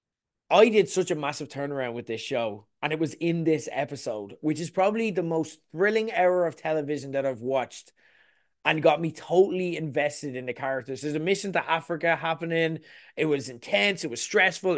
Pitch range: 135-175 Hz